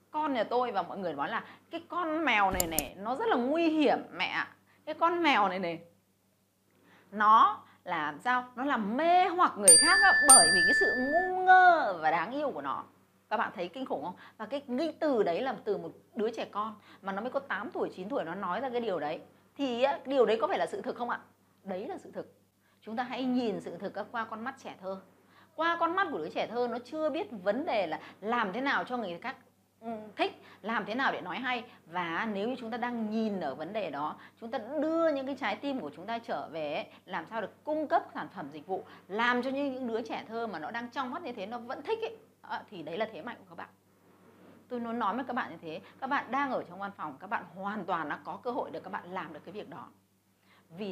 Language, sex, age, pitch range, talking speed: Vietnamese, female, 20-39, 205-295 Hz, 255 wpm